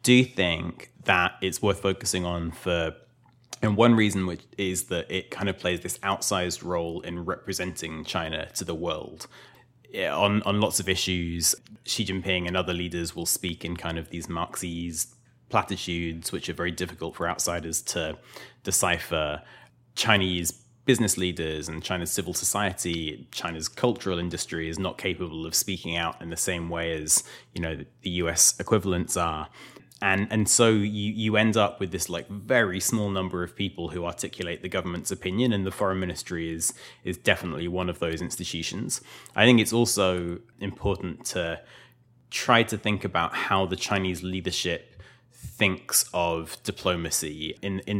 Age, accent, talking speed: 20-39, British, 165 wpm